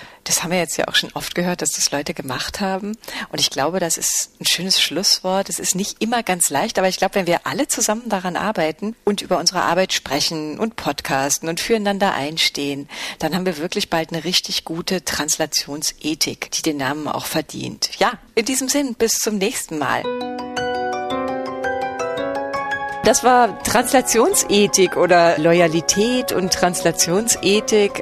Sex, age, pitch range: female, 40-59, 155-210 Hz